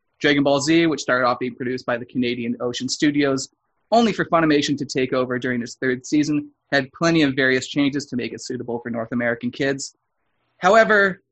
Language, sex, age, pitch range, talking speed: English, male, 30-49, 135-180 Hz, 195 wpm